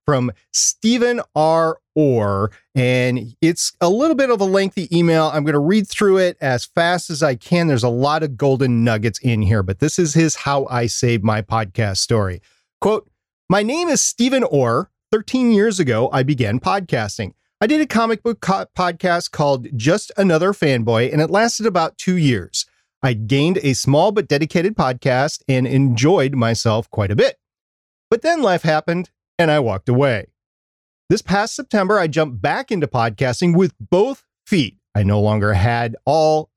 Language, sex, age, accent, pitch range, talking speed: English, male, 40-59, American, 125-195 Hz, 175 wpm